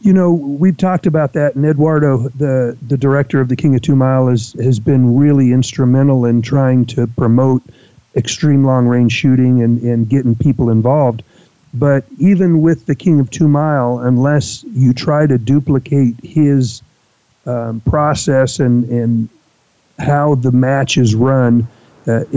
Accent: American